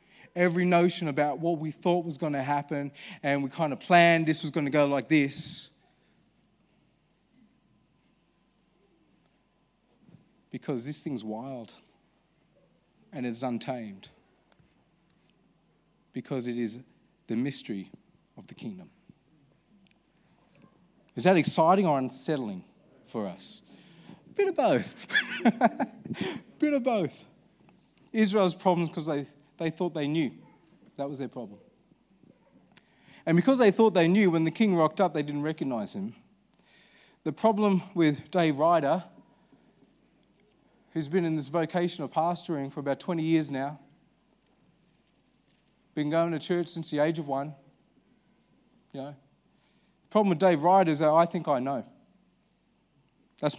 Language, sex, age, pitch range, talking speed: English, male, 30-49, 140-185 Hz, 130 wpm